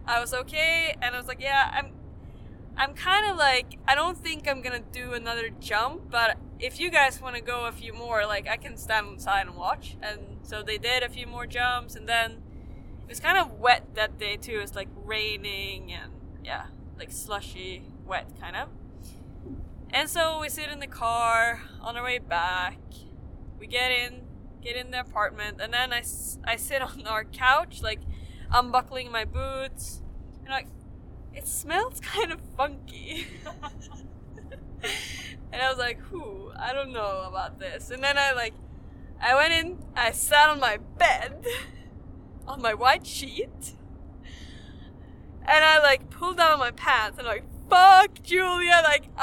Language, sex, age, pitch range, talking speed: Hebrew, female, 10-29, 235-325 Hz, 175 wpm